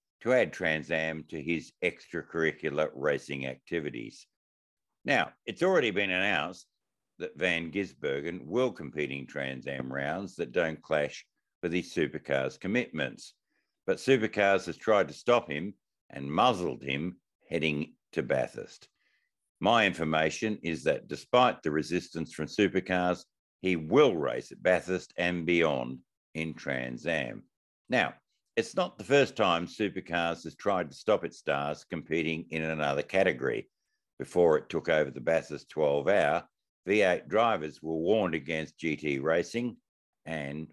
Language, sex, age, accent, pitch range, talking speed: English, male, 60-79, Australian, 75-95 Hz, 135 wpm